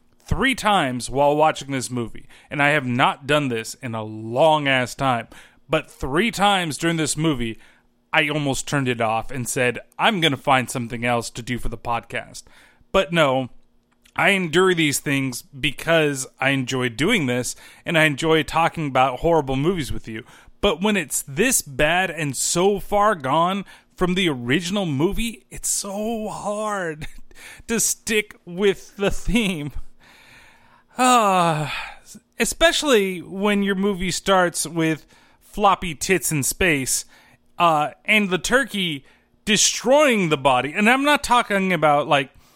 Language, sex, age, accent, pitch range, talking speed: English, male, 30-49, American, 135-200 Hz, 150 wpm